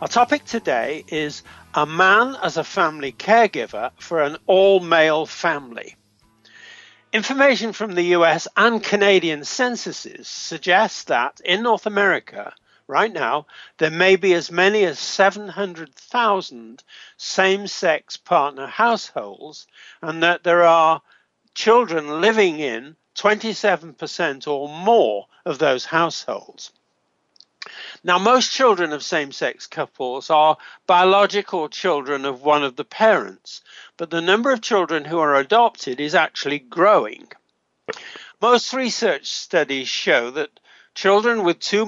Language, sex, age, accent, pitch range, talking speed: English, male, 50-69, British, 155-220 Hz, 120 wpm